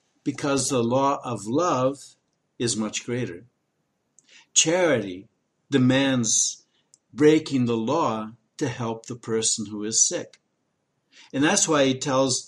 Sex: male